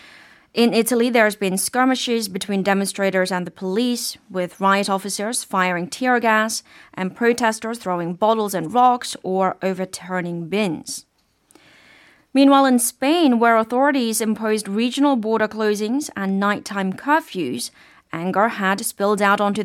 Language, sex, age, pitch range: Korean, female, 30-49, 190-245 Hz